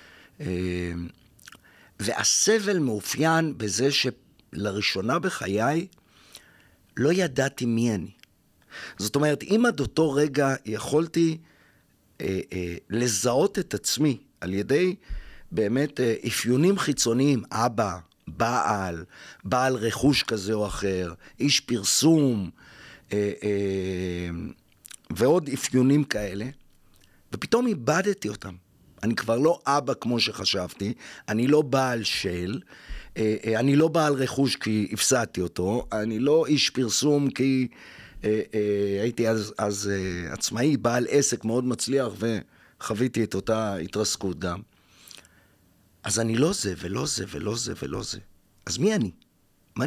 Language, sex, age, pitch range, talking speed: Hebrew, male, 50-69, 100-140 Hz, 120 wpm